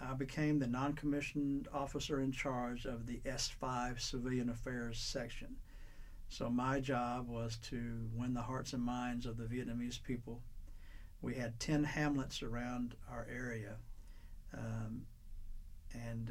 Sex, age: male, 60-79